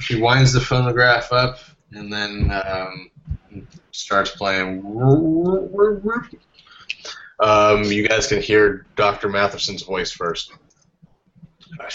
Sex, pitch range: male, 95-125 Hz